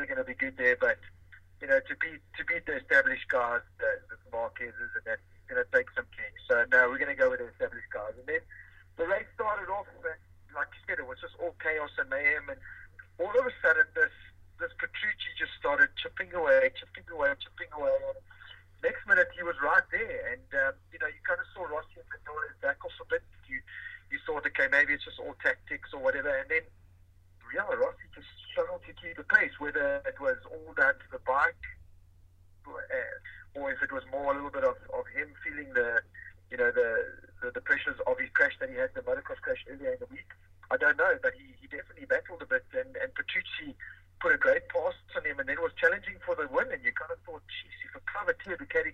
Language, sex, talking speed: English, male, 230 wpm